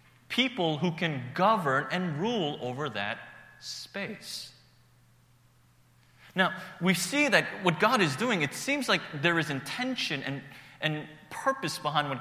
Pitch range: 125-175 Hz